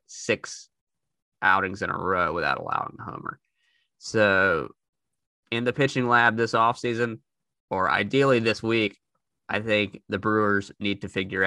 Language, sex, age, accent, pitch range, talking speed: English, male, 20-39, American, 95-120 Hz, 140 wpm